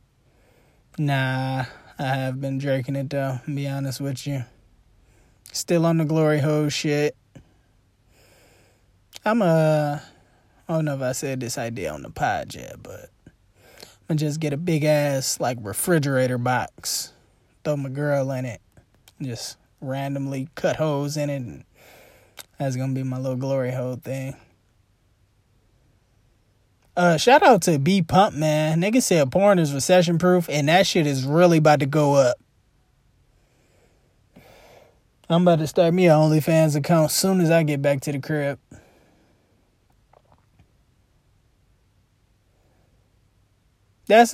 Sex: male